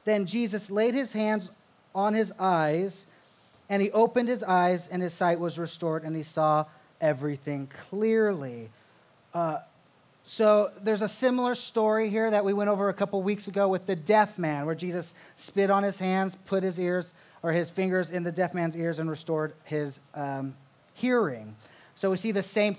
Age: 30-49